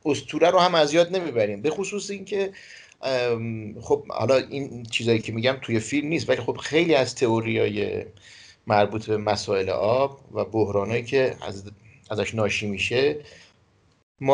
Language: Persian